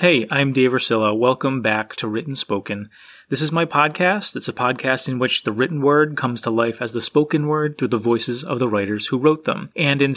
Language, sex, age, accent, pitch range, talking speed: English, male, 30-49, American, 120-155 Hz, 230 wpm